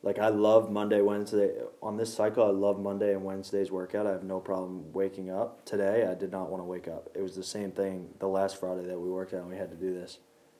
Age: 20-39